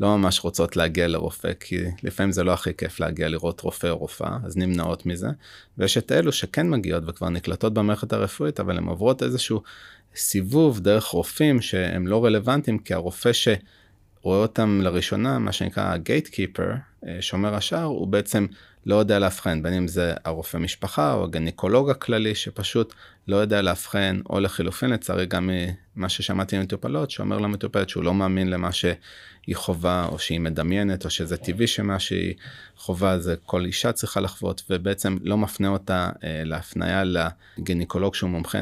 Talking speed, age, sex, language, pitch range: 160 wpm, 30-49, male, Hebrew, 90-105 Hz